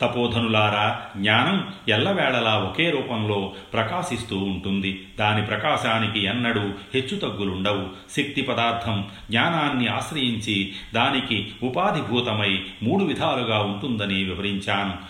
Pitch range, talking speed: 100-125 Hz, 85 wpm